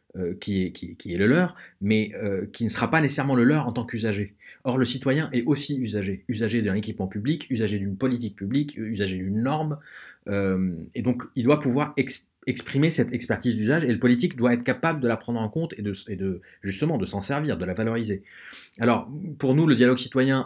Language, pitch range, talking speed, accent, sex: French, 105-130 Hz, 220 wpm, French, male